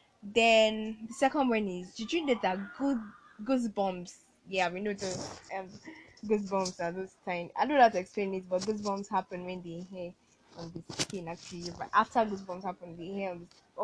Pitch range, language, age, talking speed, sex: 185-225 Hz, English, 10-29, 190 wpm, female